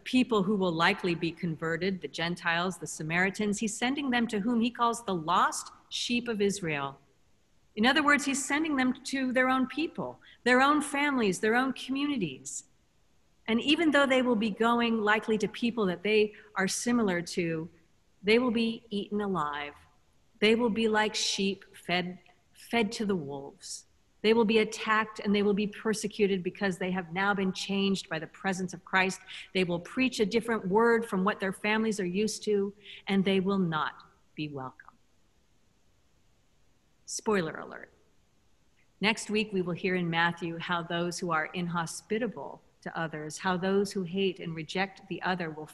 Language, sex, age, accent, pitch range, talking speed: English, female, 40-59, American, 175-220 Hz, 175 wpm